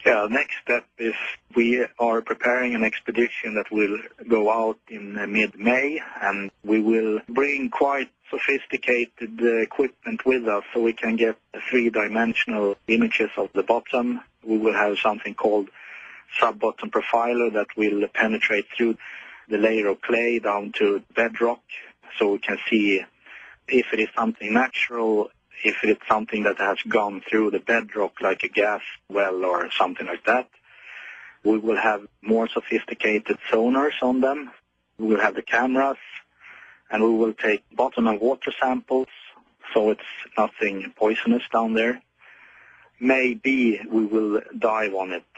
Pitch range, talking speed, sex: 105-120 Hz, 145 wpm, male